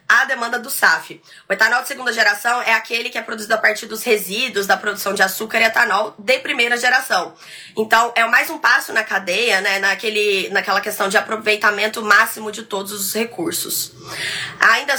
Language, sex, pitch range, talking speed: Portuguese, female, 205-255 Hz, 180 wpm